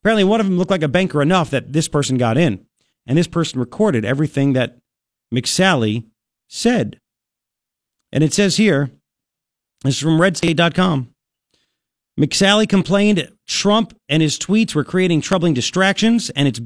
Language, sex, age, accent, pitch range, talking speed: English, male, 40-59, American, 140-200 Hz, 150 wpm